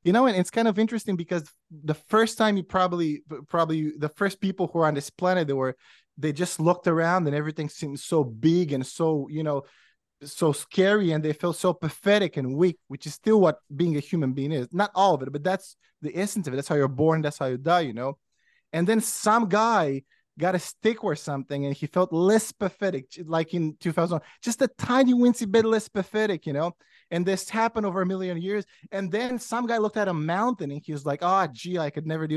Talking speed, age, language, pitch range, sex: 235 wpm, 20-39, English, 155-200 Hz, male